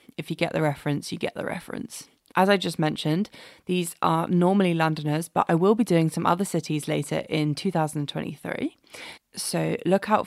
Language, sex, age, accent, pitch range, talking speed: English, female, 20-39, British, 155-195 Hz, 180 wpm